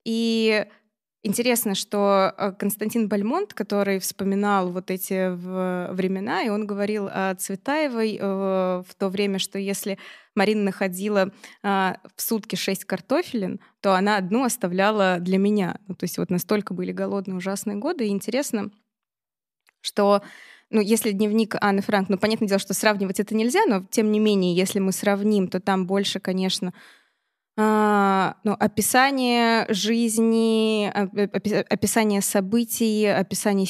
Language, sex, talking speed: Russian, female, 130 wpm